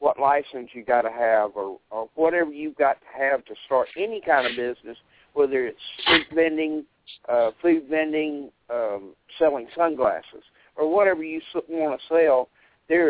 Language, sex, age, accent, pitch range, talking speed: English, male, 60-79, American, 130-160 Hz, 165 wpm